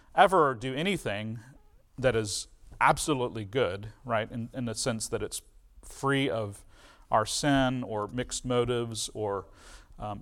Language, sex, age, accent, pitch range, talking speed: English, male, 40-59, American, 110-140 Hz, 135 wpm